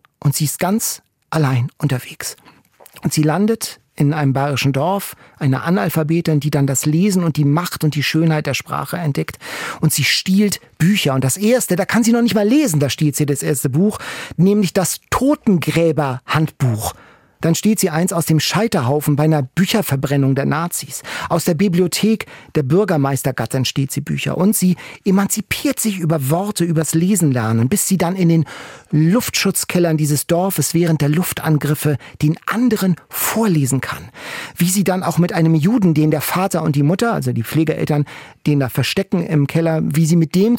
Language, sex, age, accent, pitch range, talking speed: German, male, 40-59, German, 145-185 Hz, 175 wpm